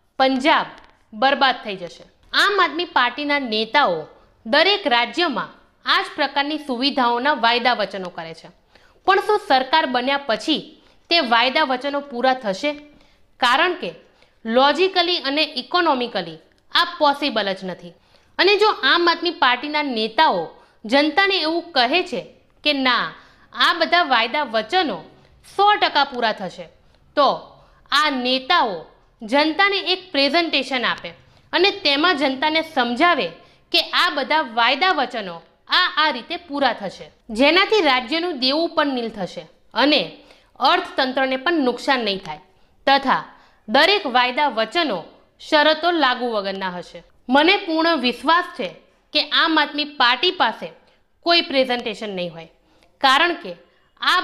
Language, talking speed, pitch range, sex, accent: Gujarati, 125 wpm, 235-330 Hz, female, native